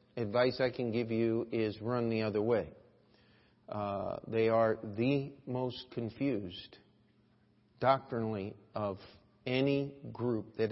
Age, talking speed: 50-69, 120 wpm